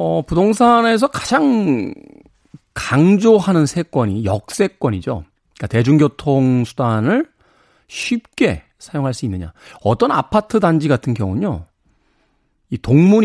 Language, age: Korean, 40-59